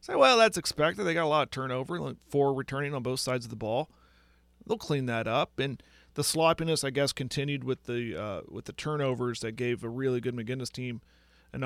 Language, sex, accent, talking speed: English, male, American, 225 wpm